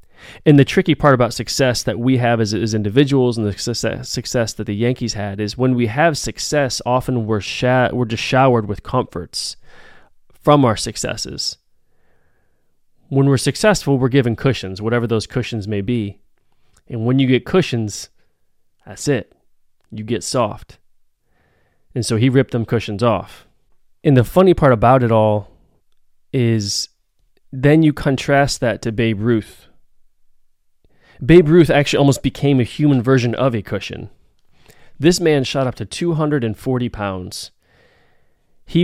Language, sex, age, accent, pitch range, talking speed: English, male, 20-39, American, 105-135 Hz, 155 wpm